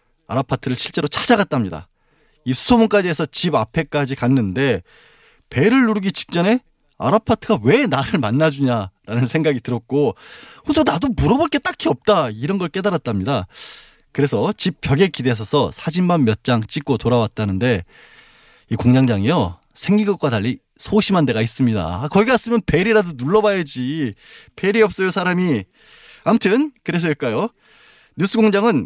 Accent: native